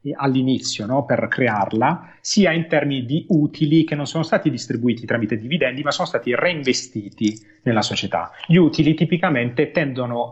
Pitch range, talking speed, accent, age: 120-155 Hz, 150 wpm, native, 30-49